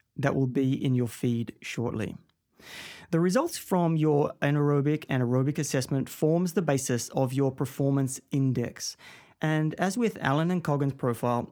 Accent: Australian